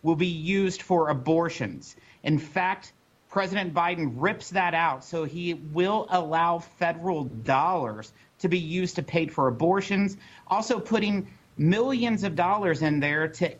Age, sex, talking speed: 50-69, male, 145 wpm